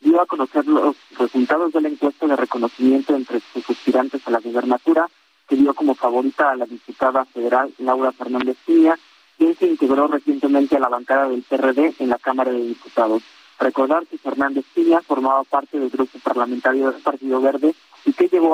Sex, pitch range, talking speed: male, 130-150 Hz, 180 wpm